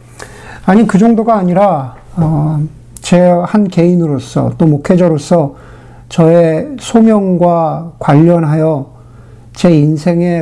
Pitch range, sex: 125-170 Hz, male